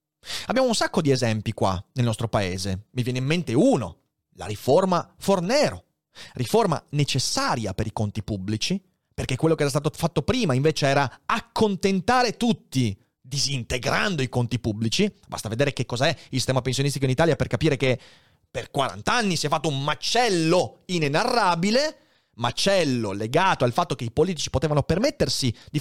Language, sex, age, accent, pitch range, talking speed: Italian, male, 30-49, native, 115-160 Hz, 160 wpm